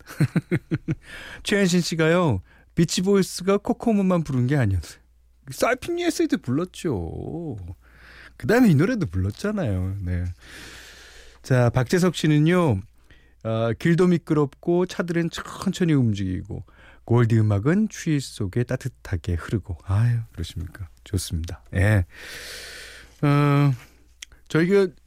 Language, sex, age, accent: Korean, male, 40-59, native